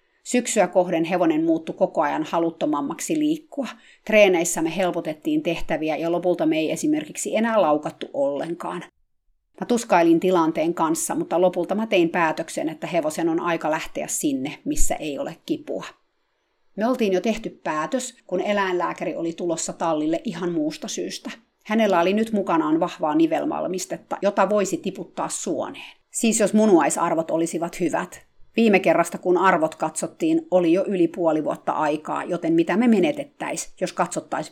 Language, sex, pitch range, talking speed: Finnish, female, 170-260 Hz, 145 wpm